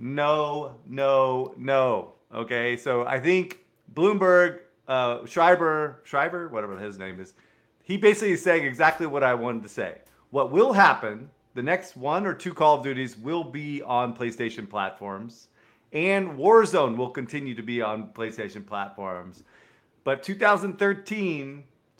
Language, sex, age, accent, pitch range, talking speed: English, male, 40-59, American, 115-160 Hz, 140 wpm